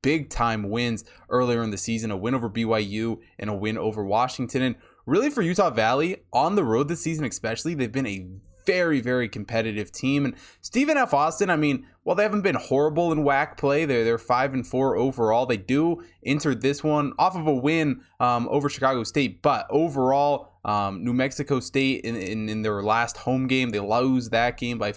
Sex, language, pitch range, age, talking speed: male, English, 110-135 Hz, 20-39, 205 wpm